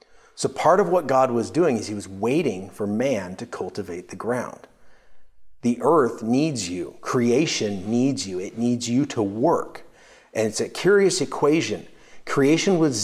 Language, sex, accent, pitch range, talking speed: English, male, American, 105-135 Hz, 165 wpm